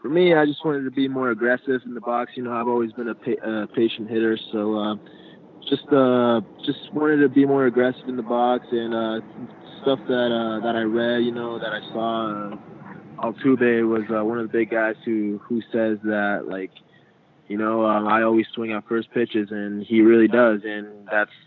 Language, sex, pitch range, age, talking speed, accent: English, male, 105-115 Hz, 20-39, 215 wpm, American